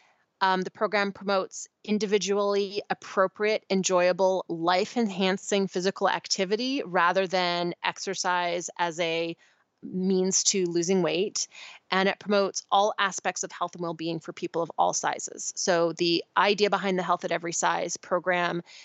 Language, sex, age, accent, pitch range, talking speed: English, female, 20-39, American, 175-195 Hz, 135 wpm